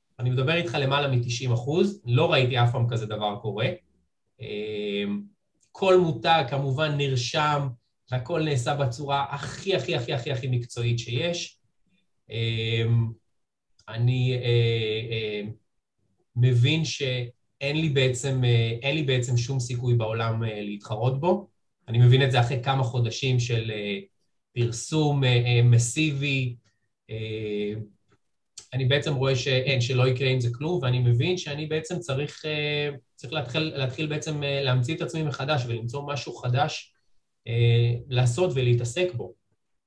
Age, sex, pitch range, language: 20-39, male, 120-155 Hz, Hebrew